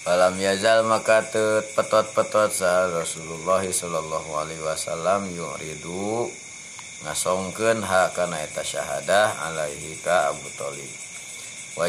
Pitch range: 85-105 Hz